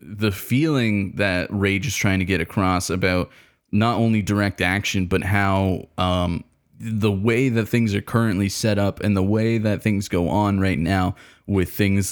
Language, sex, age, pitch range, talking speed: English, male, 20-39, 95-110 Hz, 180 wpm